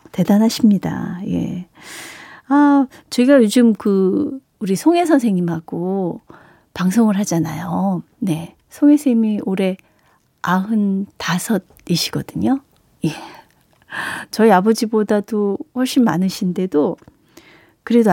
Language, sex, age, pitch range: Korean, female, 40-59, 185-245 Hz